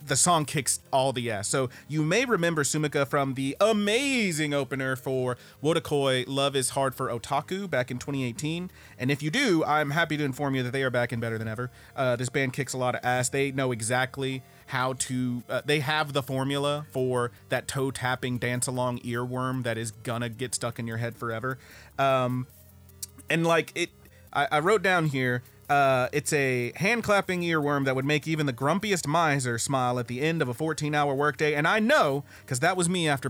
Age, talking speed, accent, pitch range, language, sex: 30-49, 205 wpm, American, 125-150 Hz, English, male